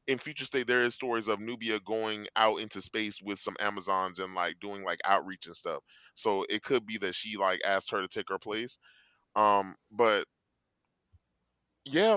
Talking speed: 185 wpm